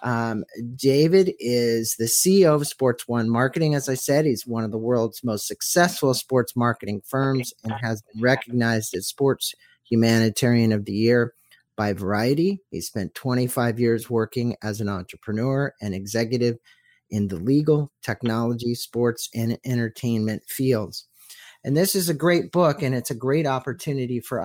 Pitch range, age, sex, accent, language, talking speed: 115-145 Hz, 50-69, male, American, English, 155 wpm